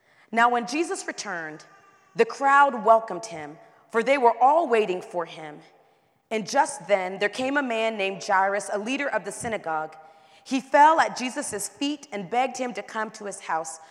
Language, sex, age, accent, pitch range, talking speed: English, female, 30-49, American, 180-245 Hz, 180 wpm